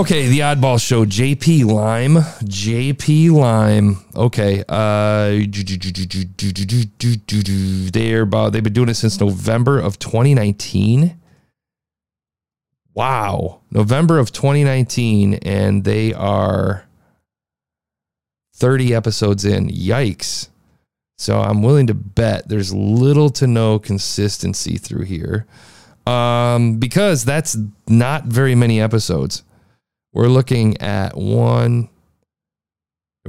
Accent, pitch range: American, 100-125 Hz